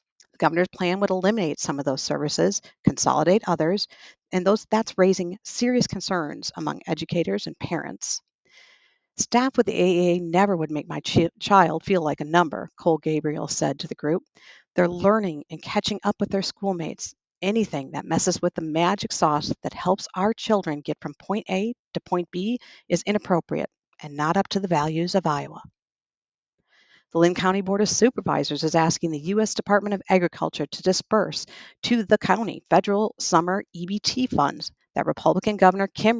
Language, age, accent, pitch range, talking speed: English, 50-69, American, 160-205 Hz, 170 wpm